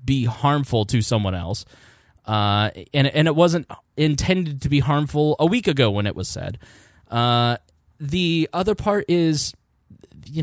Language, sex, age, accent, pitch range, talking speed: English, male, 10-29, American, 115-160 Hz, 155 wpm